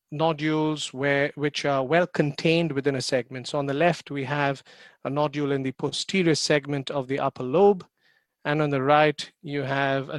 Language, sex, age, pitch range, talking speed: English, male, 40-59, 140-160 Hz, 190 wpm